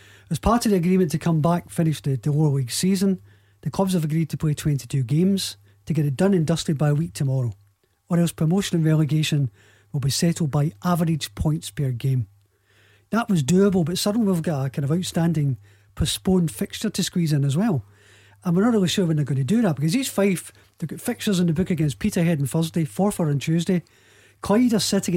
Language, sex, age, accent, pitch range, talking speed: English, male, 40-59, British, 140-185 Hz, 225 wpm